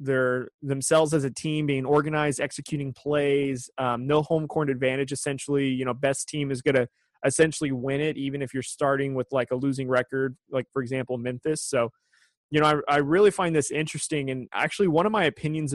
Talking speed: 200 wpm